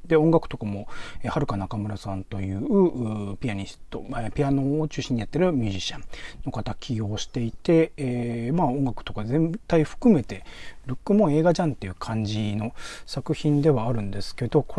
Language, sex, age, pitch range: Japanese, male, 40-59, 115-185 Hz